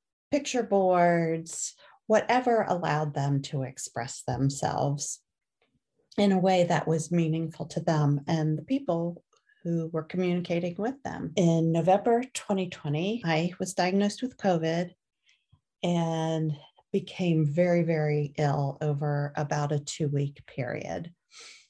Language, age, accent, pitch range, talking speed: English, 40-59, American, 150-185 Hz, 120 wpm